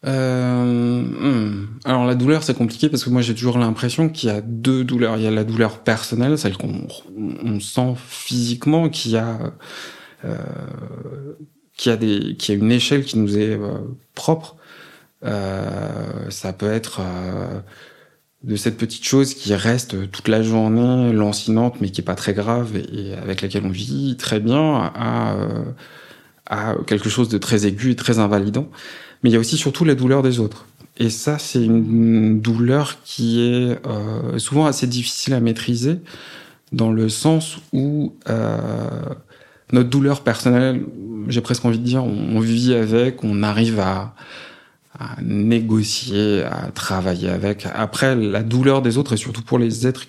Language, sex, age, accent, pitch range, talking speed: French, male, 20-39, French, 110-130 Hz, 170 wpm